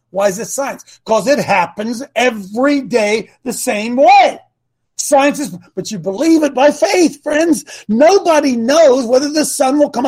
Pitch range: 205-305 Hz